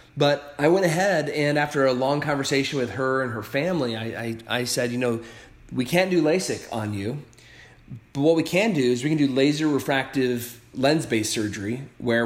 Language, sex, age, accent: English, male, 30-49, American